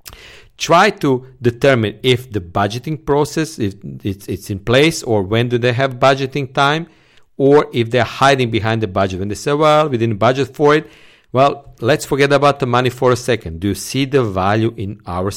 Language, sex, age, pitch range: English, male, 50-69, 100-135 Hz